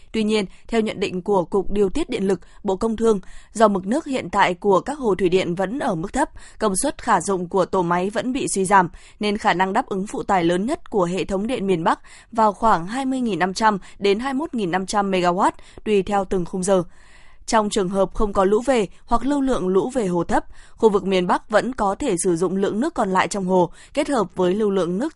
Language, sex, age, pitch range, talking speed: Vietnamese, female, 20-39, 190-225 Hz, 240 wpm